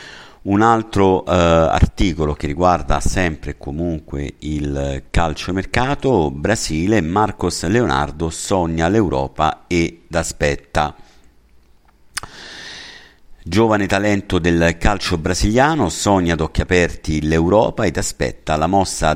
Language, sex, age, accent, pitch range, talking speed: Italian, male, 50-69, native, 75-95 Hz, 105 wpm